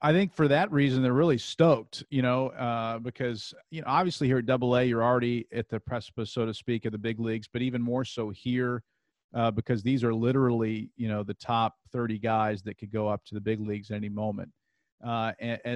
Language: English